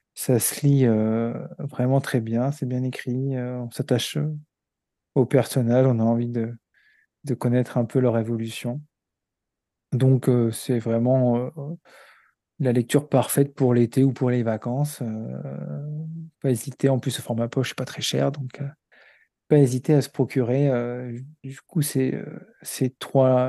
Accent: French